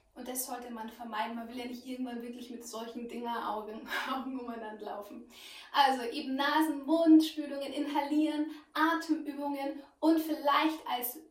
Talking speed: 140 wpm